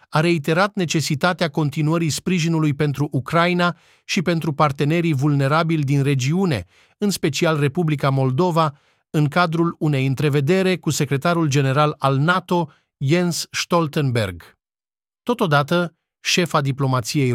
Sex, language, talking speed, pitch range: male, Romanian, 105 wpm, 135-165 Hz